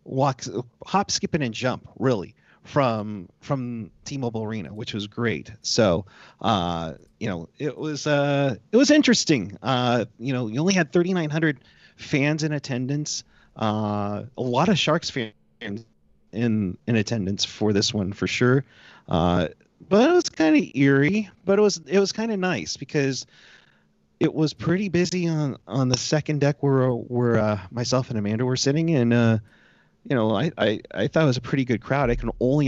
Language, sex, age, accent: English, male, 30-49, American